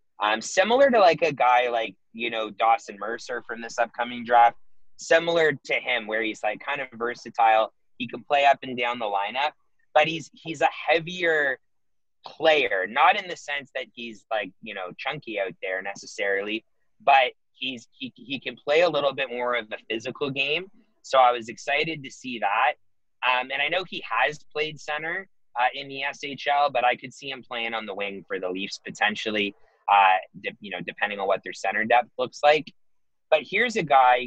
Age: 30-49